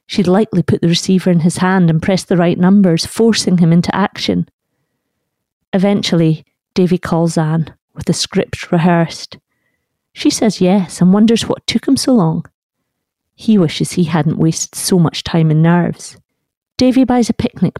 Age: 40-59